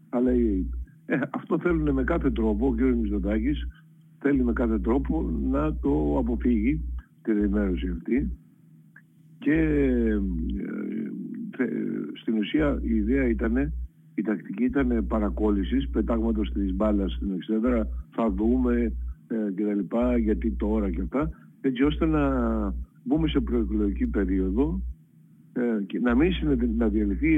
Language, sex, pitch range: Greek, male, 95-130 Hz